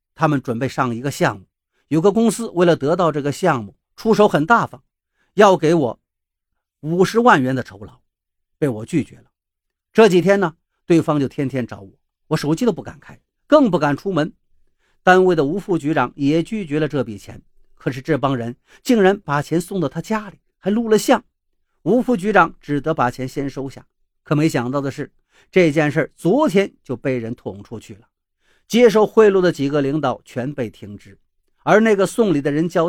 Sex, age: male, 50-69